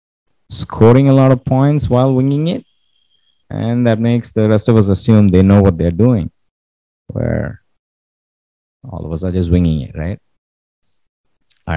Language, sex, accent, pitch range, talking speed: English, male, Indian, 85-115 Hz, 160 wpm